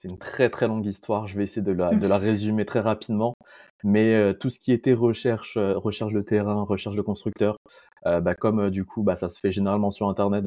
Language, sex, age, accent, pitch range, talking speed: French, male, 20-39, French, 95-115 Hz, 240 wpm